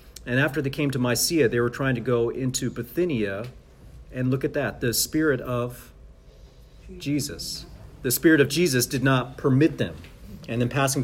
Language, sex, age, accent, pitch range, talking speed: English, male, 40-59, American, 115-145 Hz, 175 wpm